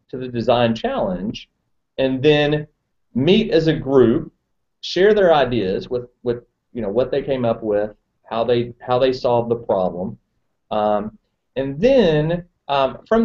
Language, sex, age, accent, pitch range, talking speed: English, male, 40-59, American, 115-150 Hz, 155 wpm